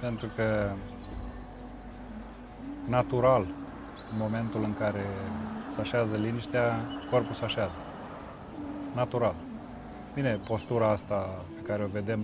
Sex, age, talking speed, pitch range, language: male, 30-49, 105 wpm, 105-135 Hz, Romanian